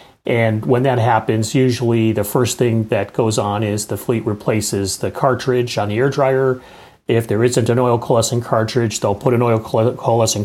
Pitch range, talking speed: 110-135 Hz, 190 wpm